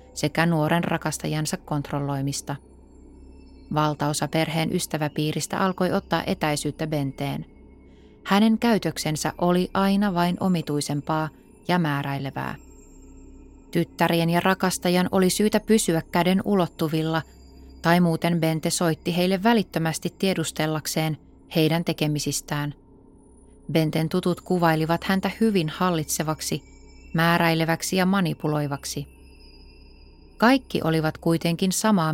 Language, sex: Finnish, female